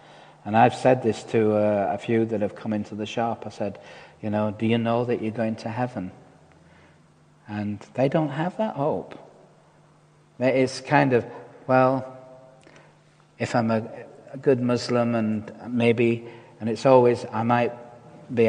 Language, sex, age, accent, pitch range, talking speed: English, male, 40-59, British, 105-125 Hz, 160 wpm